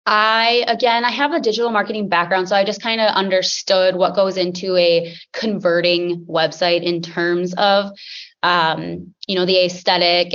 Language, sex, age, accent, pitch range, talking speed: English, female, 20-39, American, 175-205 Hz, 160 wpm